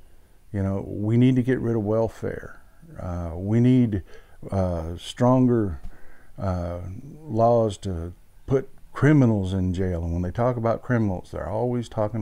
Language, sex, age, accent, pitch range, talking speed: English, male, 50-69, American, 90-125 Hz, 150 wpm